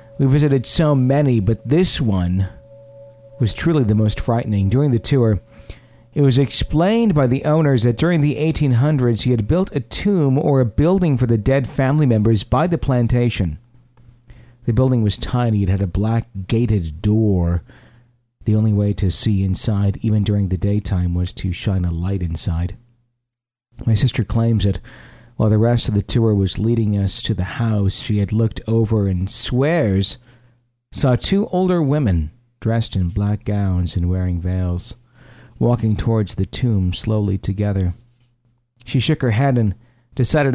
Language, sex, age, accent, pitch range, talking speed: English, male, 40-59, American, 105-130 Hz, 165 wpm